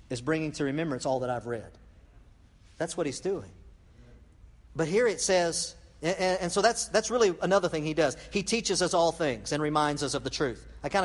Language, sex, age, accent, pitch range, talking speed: English, male, 50-69, American, 165-205 Hz, 210 wpm